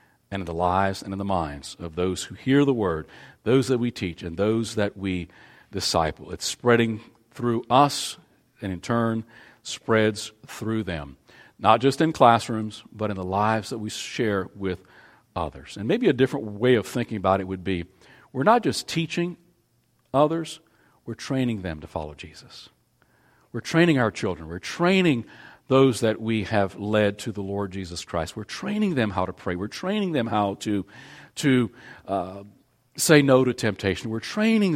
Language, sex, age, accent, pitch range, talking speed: English, male, 50-69, American, 95-130 Hz, 180 wpm